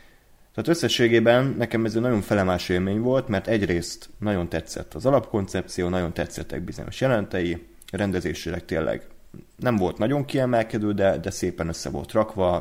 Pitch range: 90-120 Hz